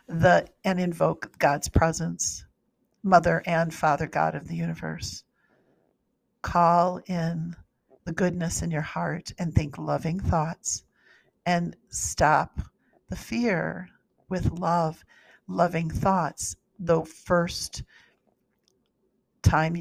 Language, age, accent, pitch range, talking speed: English, 50-69, American, 155-180 Hz, 105 wpm